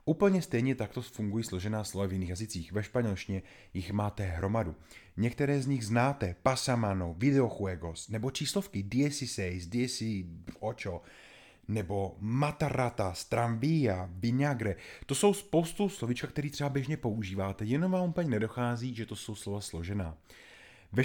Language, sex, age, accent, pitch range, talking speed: Czech, male, 30-49, native, 100-140 Hz, 135 wpm